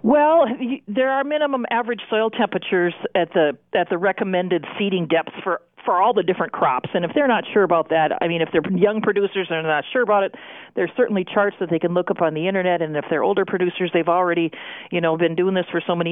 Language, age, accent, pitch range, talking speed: English, 40-59, American, 185-265 Hz, 240 wpm